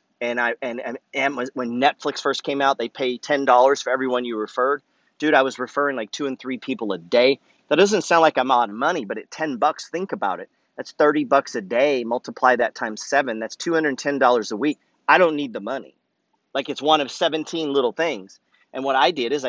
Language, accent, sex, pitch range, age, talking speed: English, American, male, 130-175 Hz, 40-59, 240 wpm